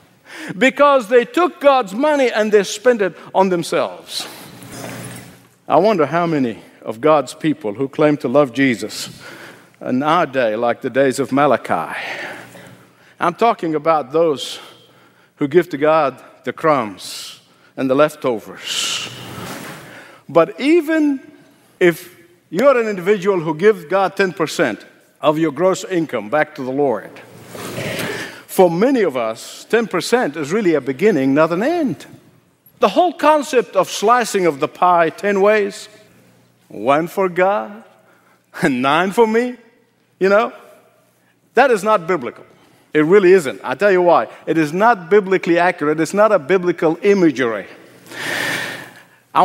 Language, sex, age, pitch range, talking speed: English, male, 60-79, 155-225 Hz, 140 wpm